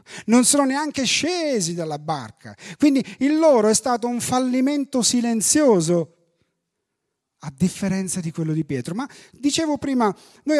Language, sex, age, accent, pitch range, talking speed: Italian, male, 40-59, native, 150-240 Hz, 135 wpm